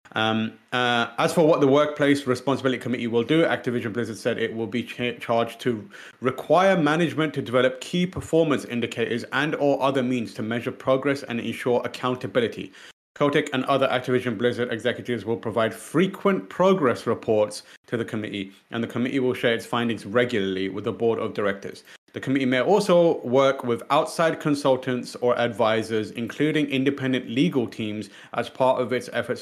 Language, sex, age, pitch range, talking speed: English, male, 30-49, 115-135 Hz, 165 wpm